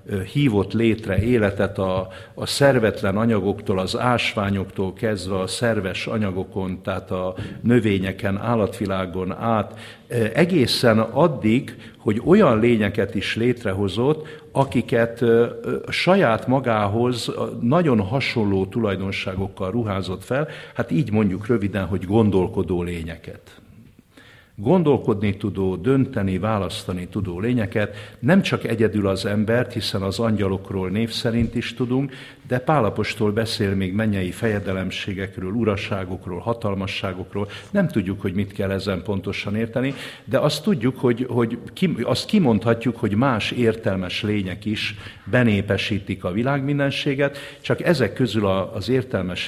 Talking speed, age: 115 wpm, 60-79